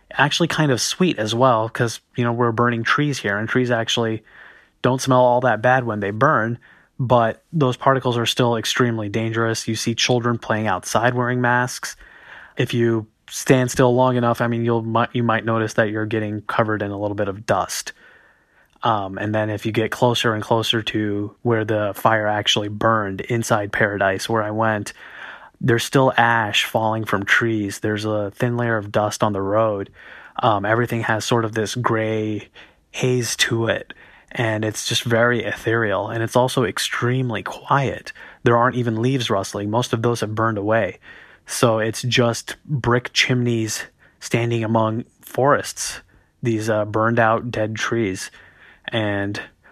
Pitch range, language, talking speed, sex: 110-120 Hz, English, 170 wpm, male